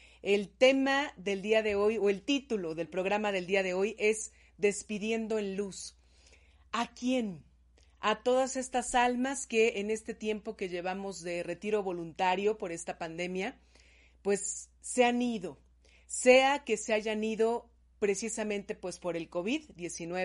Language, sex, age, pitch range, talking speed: Spanish, female, 40-59, 185-230 Hz, 150 wpm